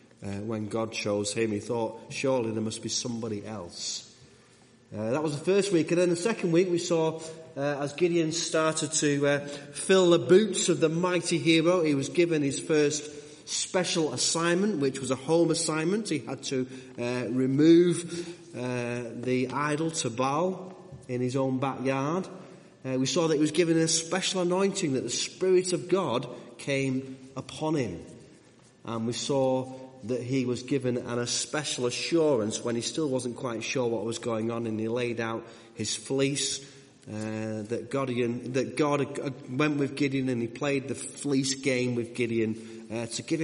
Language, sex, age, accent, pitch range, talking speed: English, male, 30-49, British, 120-160 Hz, 175 wpm